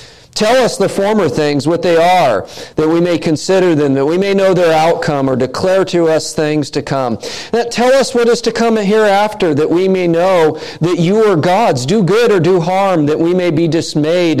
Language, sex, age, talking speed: English, male, 40-59, 215 wpm